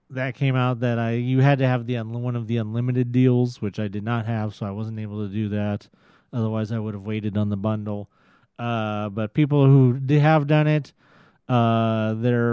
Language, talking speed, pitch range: English, 215 wpm, 110-130 Hz